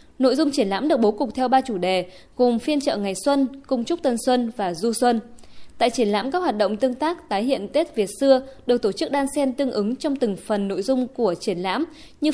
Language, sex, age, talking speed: Vietnamese, female, 20-39, 255 wpm